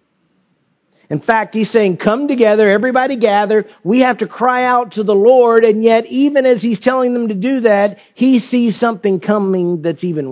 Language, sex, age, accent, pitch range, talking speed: English, male, 50-69, American, 145-205 Hz, 185 wpm